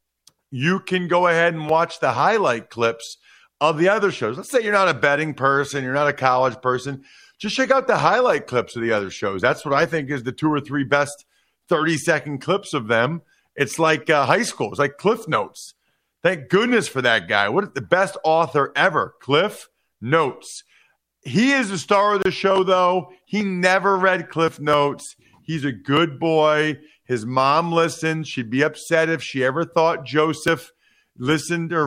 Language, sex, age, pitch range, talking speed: English, male, 50-69, 145-185 Hz, 190 wpm